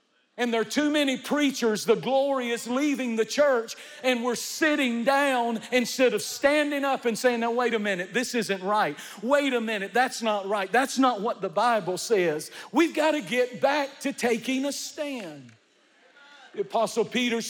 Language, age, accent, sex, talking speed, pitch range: English, 50-69, American, male, 180 wpm, 185-240 Hz